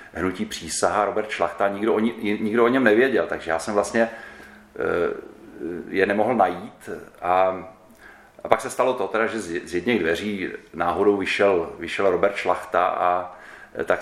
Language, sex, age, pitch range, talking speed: Czech, male, 40-59, 90-105 Hz, 145 wpm